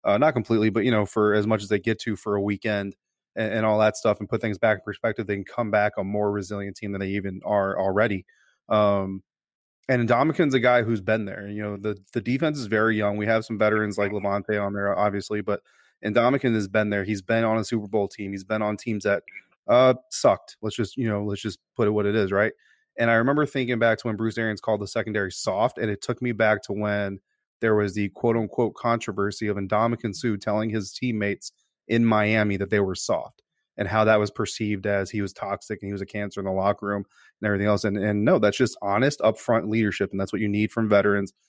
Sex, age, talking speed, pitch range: male, 20-39, 245 wpm, 100-115 Hz